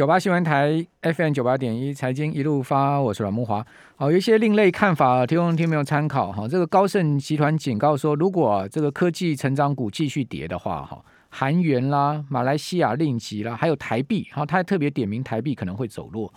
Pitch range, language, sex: 125-165 Hz, Chinese, male